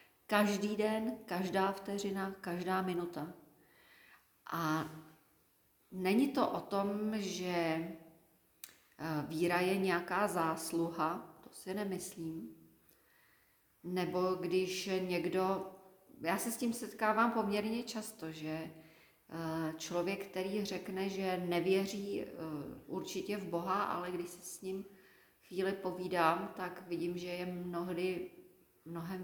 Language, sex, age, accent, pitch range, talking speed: Czech, female, 40-59, native, 175-200 Hz, 105 wpm